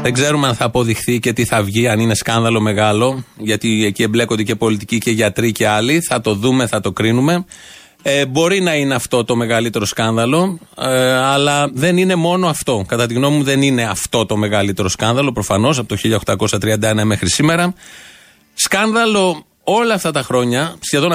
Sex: male